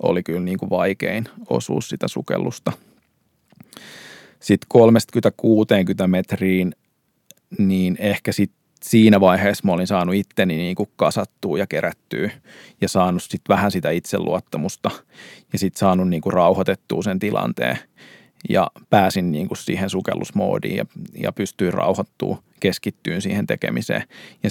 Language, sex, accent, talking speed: Finnish, male, native, 120 wpm